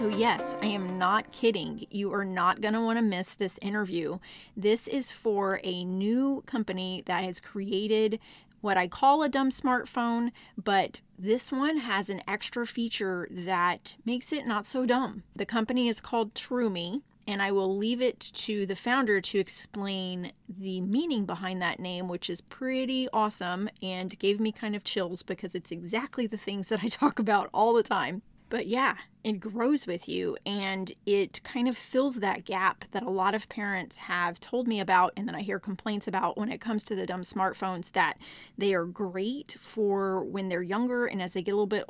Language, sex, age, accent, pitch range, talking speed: English, female, 30-49, American, 190-230 Hz, 195 wpm